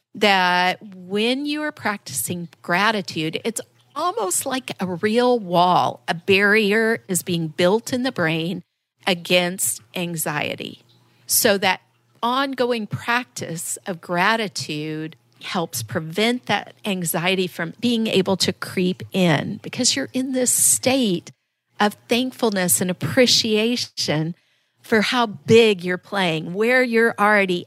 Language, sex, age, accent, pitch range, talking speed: English, female, 50-69, American, 175-255 Hz, 120 wpm